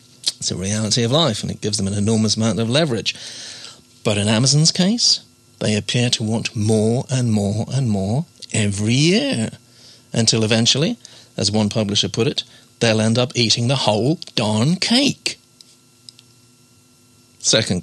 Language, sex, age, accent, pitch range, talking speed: English, male, 40-59, British, 105-125 Hz, 150 wpm